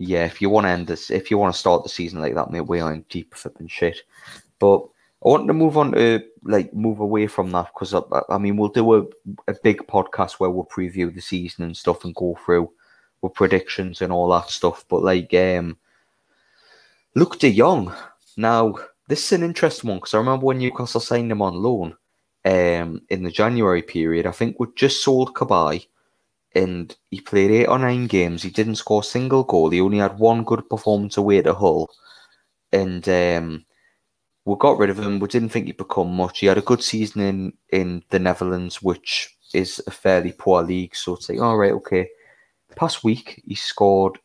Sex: male